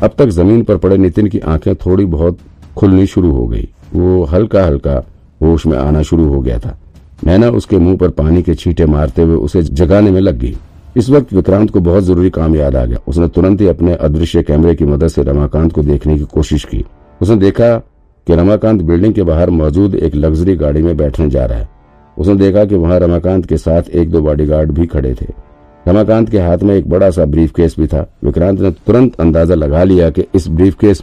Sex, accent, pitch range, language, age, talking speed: male, native, 75-95 Hz, Hindi, 50-69, 210 wpm